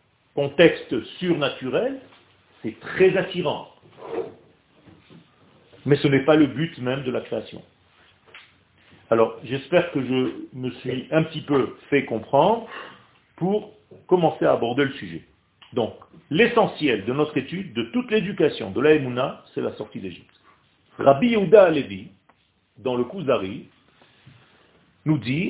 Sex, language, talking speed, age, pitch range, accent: male, French, 125 wpm, 40-59, 135-195 Hz, French